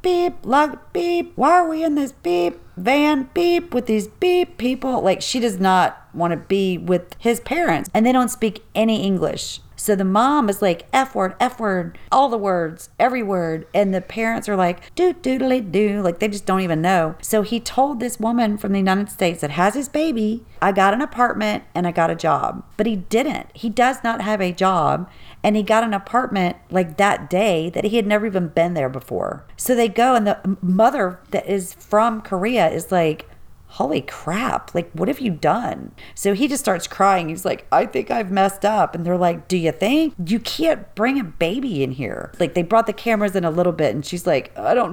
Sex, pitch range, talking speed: female, 180-245 Hz, 220 wpm